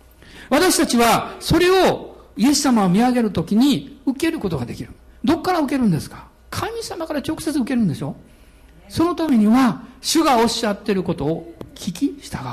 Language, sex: Japanese, male